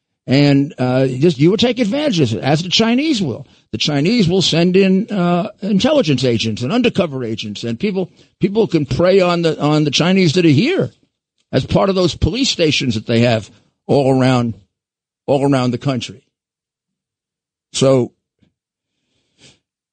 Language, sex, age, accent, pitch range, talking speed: English, male, 50-69, American, 120-170 Hz, 165 wpm